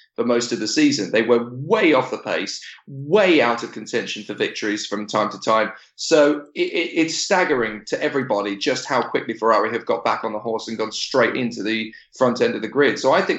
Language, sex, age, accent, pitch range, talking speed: English, male, 20-39, British, 110-130 Hz, 220 wpm